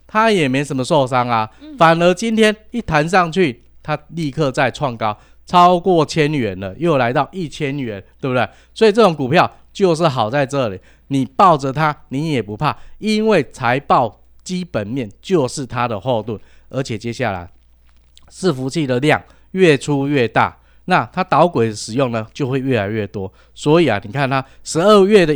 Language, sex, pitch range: Chinese, male, 120-175 Hz